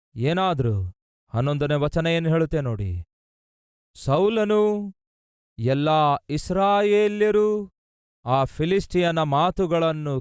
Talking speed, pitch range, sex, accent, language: 70 wpm, 110-175 Hz, male, native, Kannada